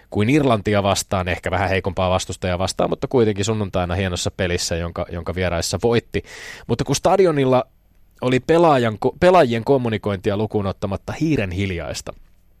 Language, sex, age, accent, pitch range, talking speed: Finnish, male, 20-39, native, 90-115 Hz, 130 wpm